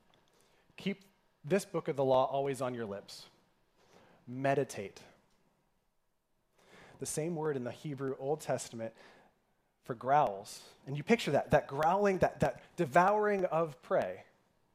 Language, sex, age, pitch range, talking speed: English, male, 30-49, 130-170 Hz, 130 wpm